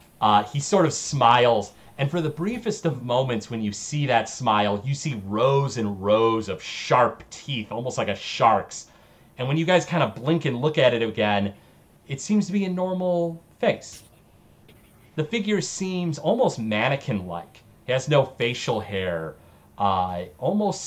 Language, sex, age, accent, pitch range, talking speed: English, male, 30-49, American, 100-140 Hz, 170 wpm